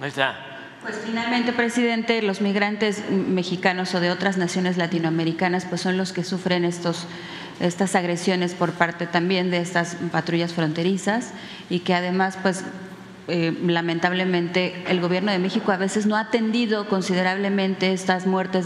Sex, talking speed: female, 140 wpm